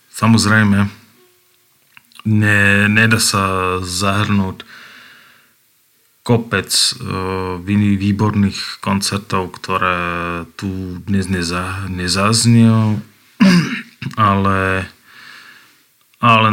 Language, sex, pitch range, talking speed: Slovak, male, 95-110 Hz, 60 wpm